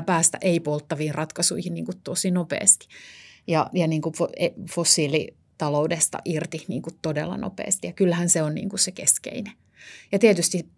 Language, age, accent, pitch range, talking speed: Finnish, 30-49, native, 155-175 Hz, 140 wpm